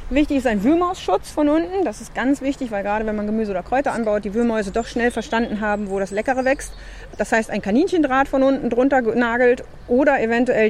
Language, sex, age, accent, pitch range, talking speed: German, female, 30-49, German, 210-265 Hz, 215 wpm